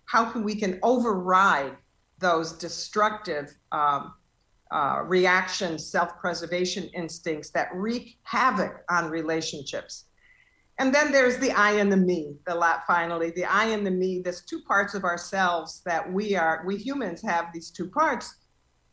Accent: American